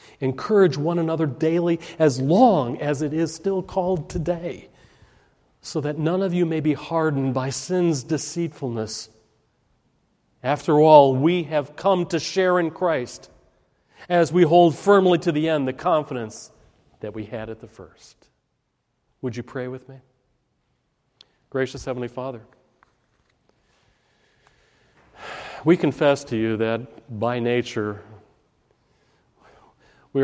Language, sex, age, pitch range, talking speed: English, male, 40-59, 115-165 Hz, 125 wpm